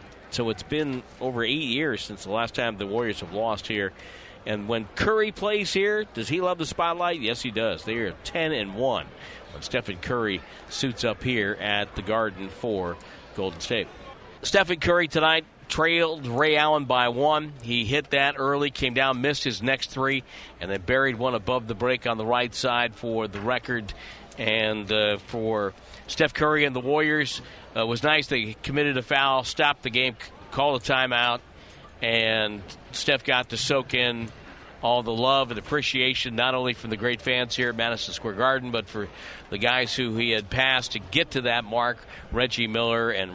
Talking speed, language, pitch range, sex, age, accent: 190 wpm, English, 110-135 Hz, male, 50-69, American